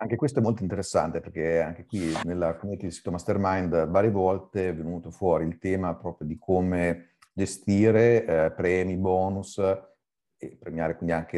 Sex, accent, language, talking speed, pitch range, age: male, native, Italian, 165 wpm, 85-100 Hz, 40-59